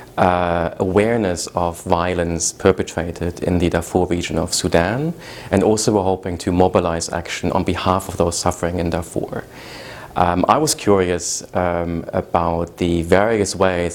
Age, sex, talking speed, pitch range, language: 30-49, male, 145 wpm, 85-100 Hz, English